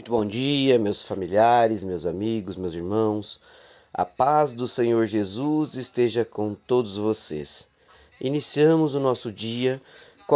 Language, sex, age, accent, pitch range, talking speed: Portuguese, male, 20-39, Brazilian, 105-130 Hz, 135 wpm